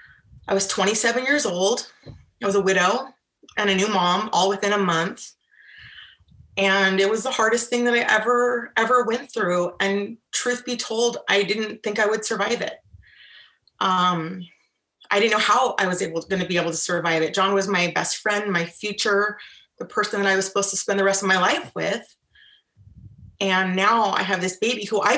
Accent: American